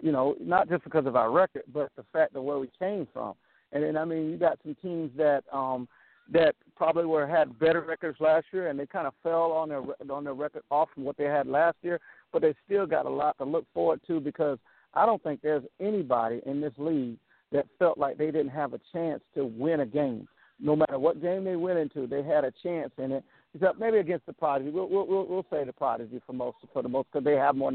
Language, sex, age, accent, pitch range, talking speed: English, male, 50-69, American, 145-175 Hz, 250 wpm